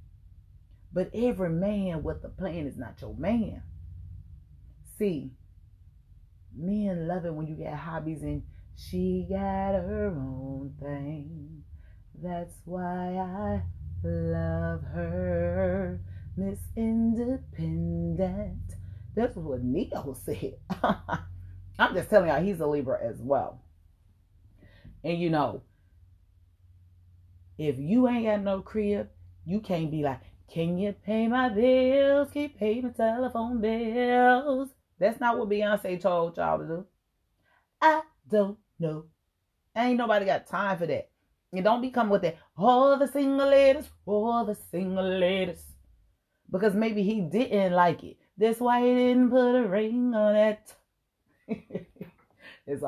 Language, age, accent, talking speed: English, 30-49, American, 135 wpm